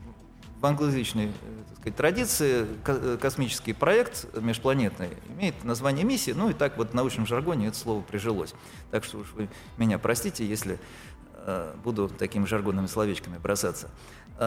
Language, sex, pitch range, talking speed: Russian, male, 110-145 Hz, 135 wpm